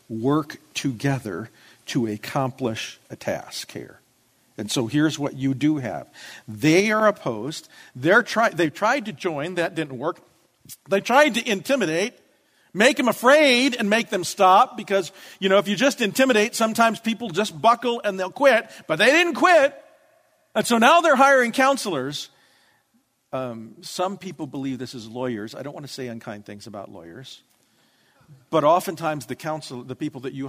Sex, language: male, English